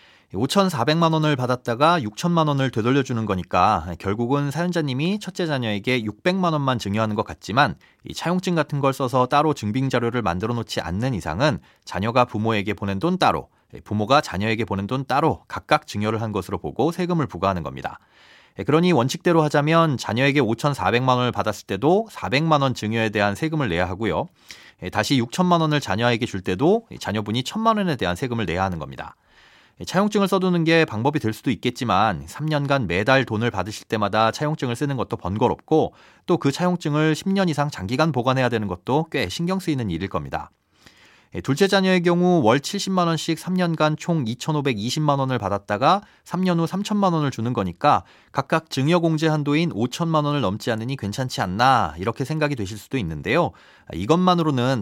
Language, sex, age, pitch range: Korean, male, 30-49, 110-160 Hz